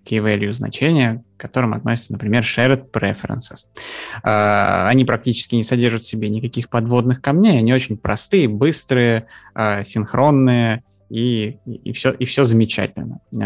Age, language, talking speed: 20-39, Russian, 120 wpm